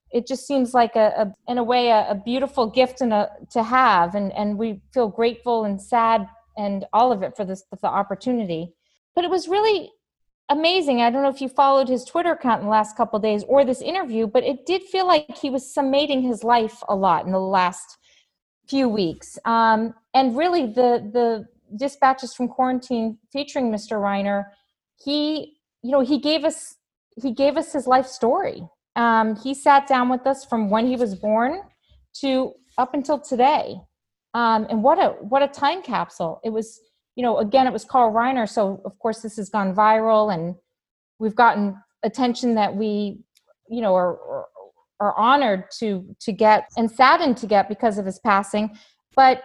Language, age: English, 40-59